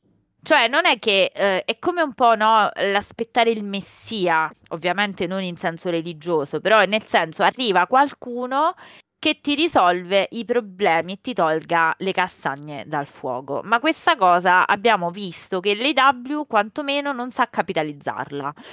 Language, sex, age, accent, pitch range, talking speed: Italian, female, 30-49, native, 170-235 Hz, 145 wpm